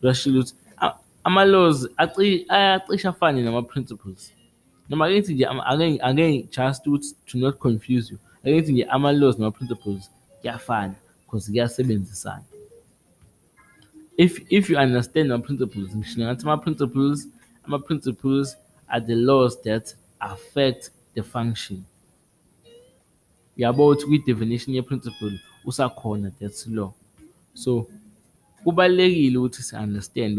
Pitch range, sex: 110-145 Hz, male